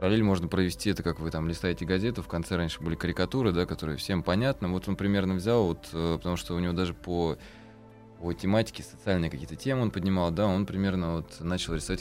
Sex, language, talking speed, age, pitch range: male, Russian, 210 wpm, 20-39, 80-100 Hz